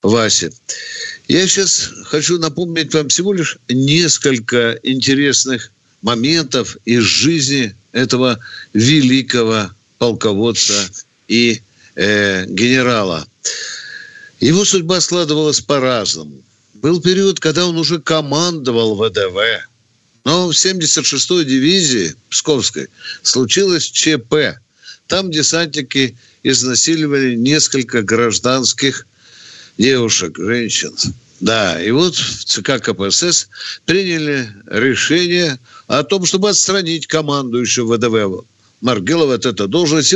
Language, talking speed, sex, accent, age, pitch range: Russian, 90 wpm, male, native, 60-79, 120-175 Hz